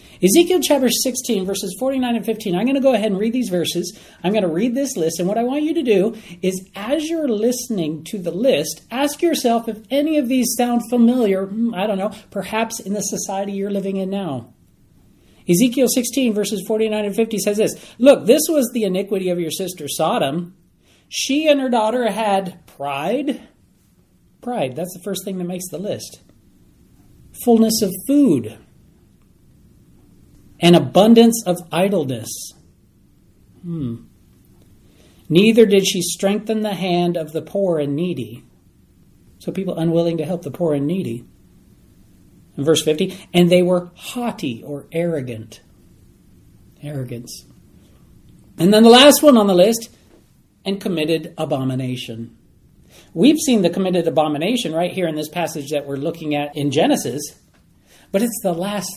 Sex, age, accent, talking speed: male, 40-59, American, 160 wpm